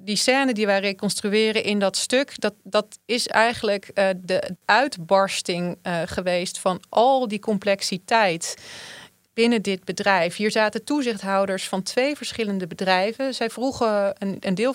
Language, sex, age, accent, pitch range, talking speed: Dutch, female, 30-49, Dutch, 185-225 Hz, 145 wpm